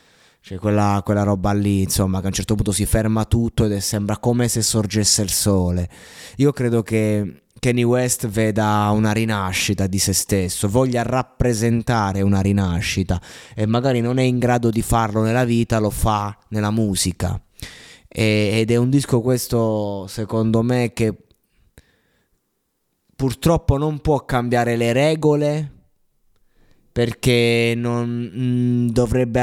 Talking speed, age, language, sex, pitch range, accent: 145 wpm, 20-39, Italian, male, 100-120 Hz, native